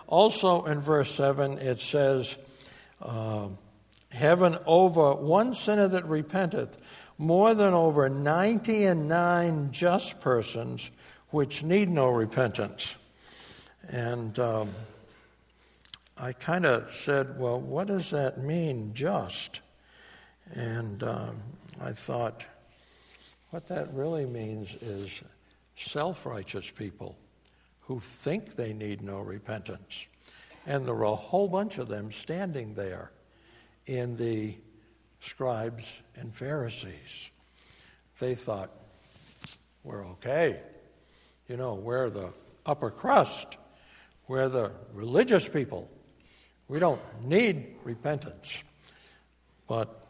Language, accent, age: English, American, 60-79